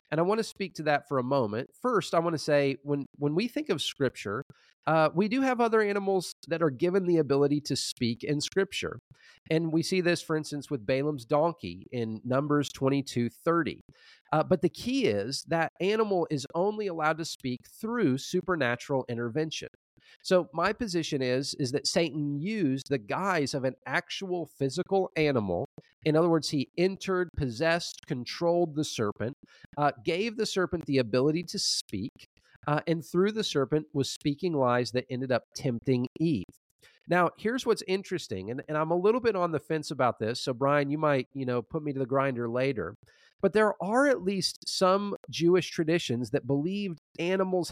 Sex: male